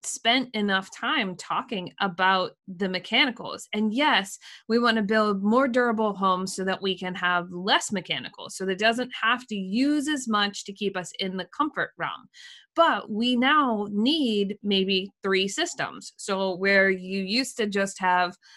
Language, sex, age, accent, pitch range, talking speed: English, female, 20-39, American, 185-220 Hz, 170 wpm